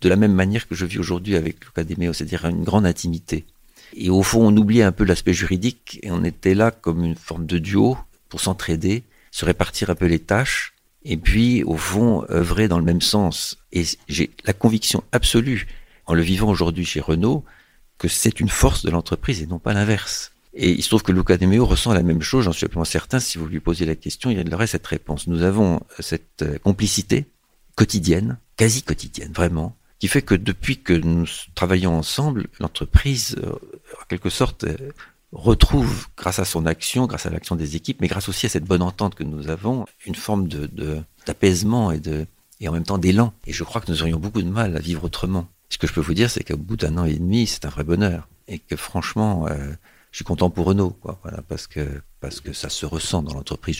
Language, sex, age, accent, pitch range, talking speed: French, male, 50-69, French, 80-105 Hz, 220 wpm